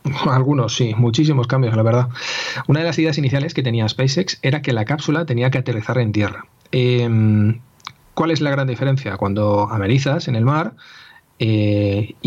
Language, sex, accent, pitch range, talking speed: Spanish, male, Spanish, 110-140 Hz, 170 wpm